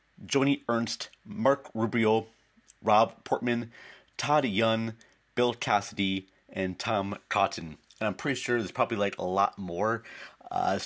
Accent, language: American, English